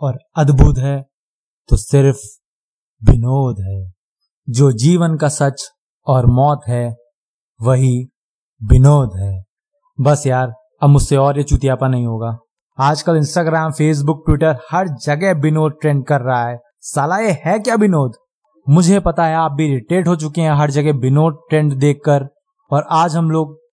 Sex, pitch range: male, 140-230 Hz